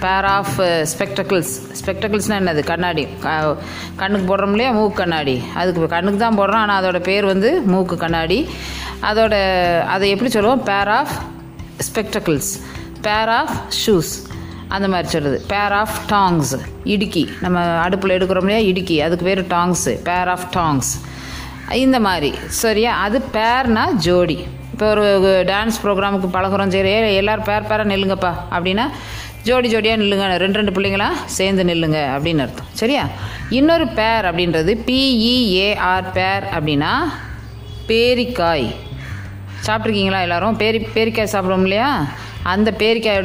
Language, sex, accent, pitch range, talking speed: English, female, Indian, 175-220 Hz, 120 wpm